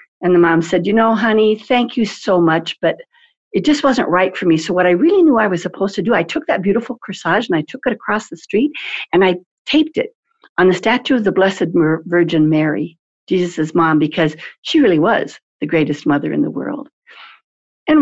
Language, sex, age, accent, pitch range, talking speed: English, female, 60-79, American, 155-215 Hz, 215 wpm